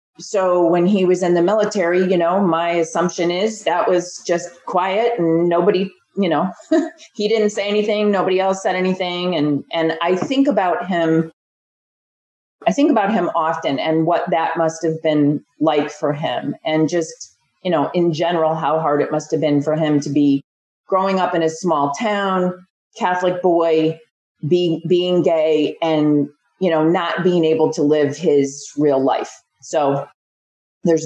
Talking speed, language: 170 wpm, English